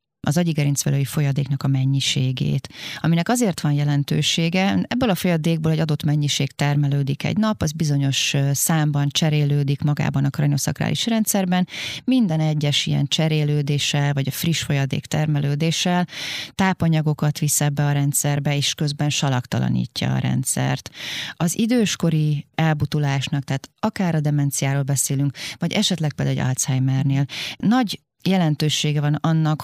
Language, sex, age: Hungarian, female, 30-49